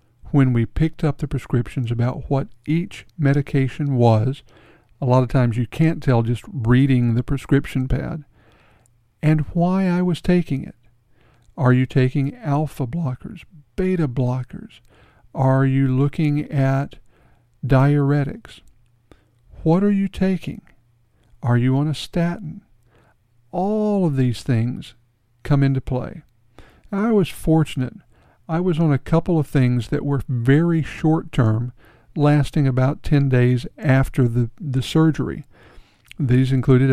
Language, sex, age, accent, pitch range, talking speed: English, male, 60-79, American, 120-150 Hz, 130 wpm